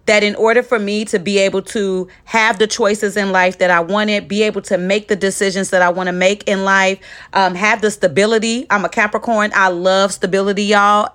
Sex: female